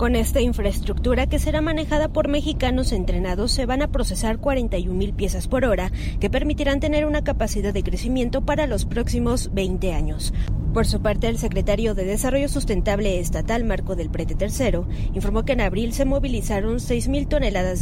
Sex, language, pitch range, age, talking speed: female, Spanish, 205-290 Hz, 20-39, 170 wpm